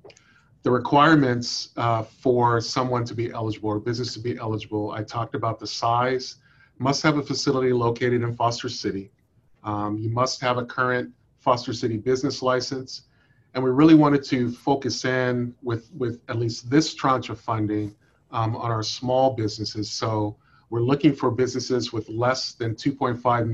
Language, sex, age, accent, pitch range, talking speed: English, male, 40-59, American, 110-130 Hz, 165 wpm